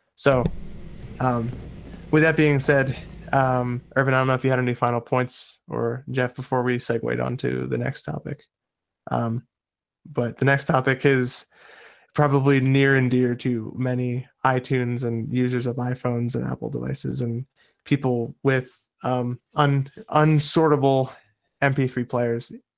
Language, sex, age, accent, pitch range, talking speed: English, male, 20-39, American, 125-145 Hz, 140 wpm